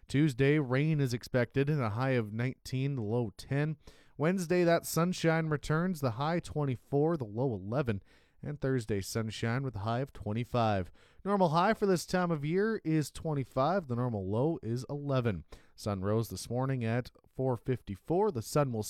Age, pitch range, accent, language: 30-49, 115-160 Hz, American, English